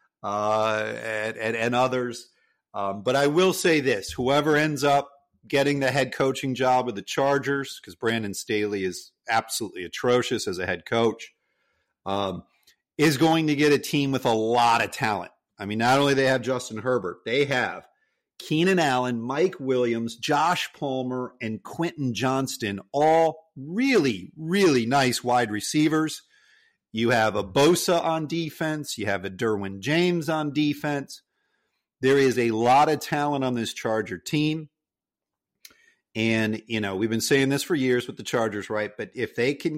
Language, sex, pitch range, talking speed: English, male, 115-155 Hz, 165 wpm